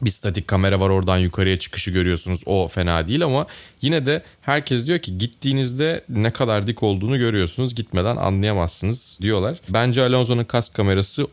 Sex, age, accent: male, 30-49, native